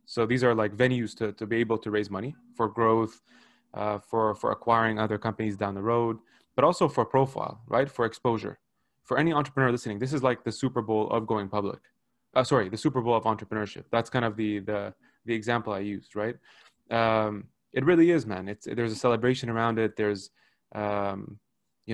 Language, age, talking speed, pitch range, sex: English, 20-39, 200 wpm, 110-130 Hz, male